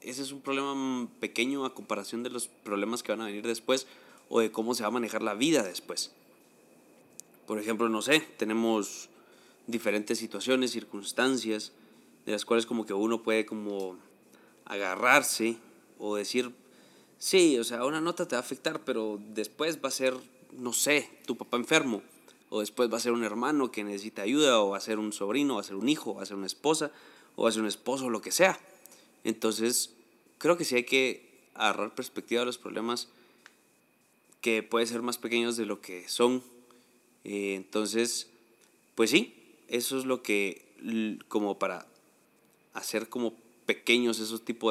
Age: 20-39